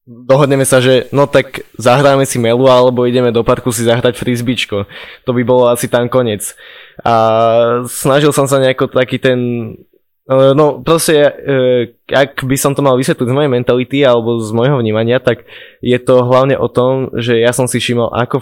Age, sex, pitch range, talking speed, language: 20-39, male, 115-130 Hz, 180 wpm, Slovak